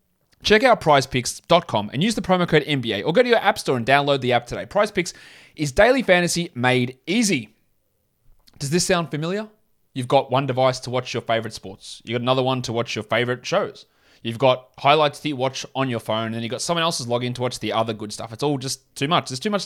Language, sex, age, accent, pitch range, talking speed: English, male, 20-39, Australian, 120-170 Hz, 230 wpm